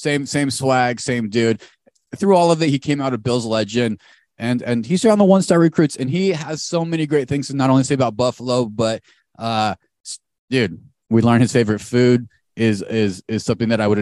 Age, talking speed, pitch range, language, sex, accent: 30-49, 220 wpm, 115-150 Hz, English, male, American